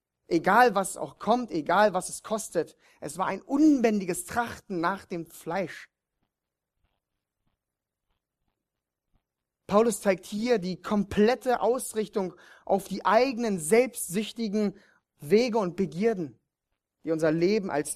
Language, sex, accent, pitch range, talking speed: German, male, German, 170-230 Hz, 110 wpm